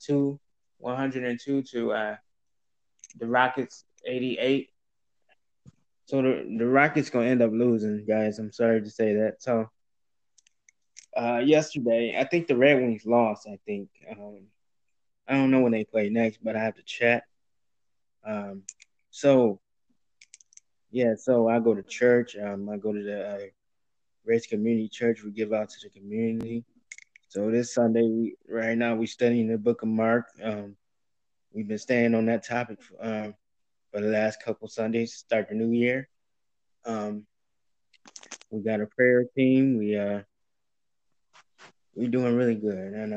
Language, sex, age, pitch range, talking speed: Amharic, male, 20-39, 105-120 Hz, 155 wpm